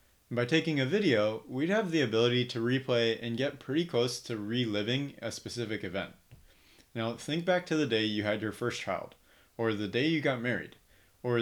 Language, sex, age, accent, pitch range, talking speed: English, male, 30-49, American, 105-135 Hz, 195 wpm